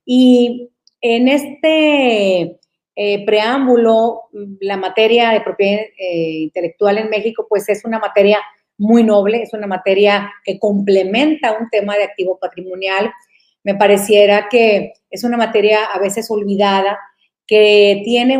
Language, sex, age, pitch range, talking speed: Spanish, female, 40-59, 190-225 Hz, 130 wpm